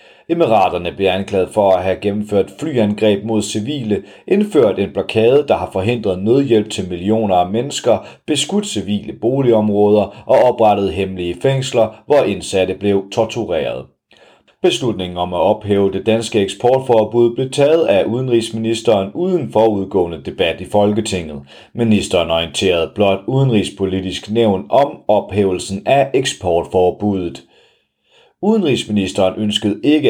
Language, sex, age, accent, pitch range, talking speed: Danish, male, 30-49, native, 95-115 Hz, 120 wpm